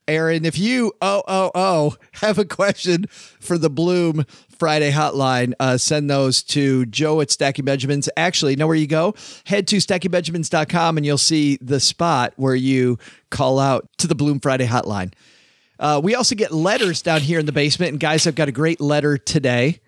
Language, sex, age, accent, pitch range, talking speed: English, male, 40-59, American, 140-180 Hz, 185 wpm